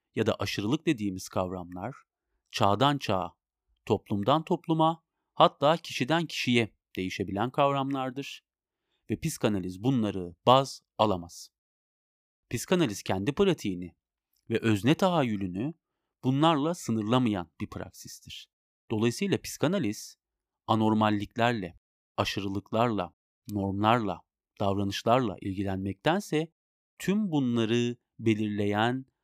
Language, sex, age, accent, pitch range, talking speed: Turkish, male, 40-59, native, 100-140 Hz, 80 wpm